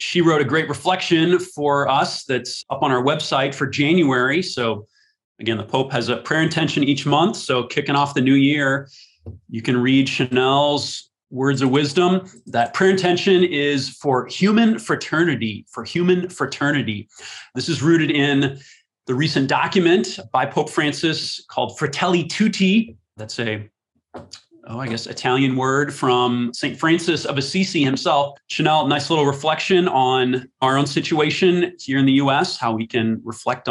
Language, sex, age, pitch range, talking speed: English, male, 30-49, 130-175 Hz, 160 wpm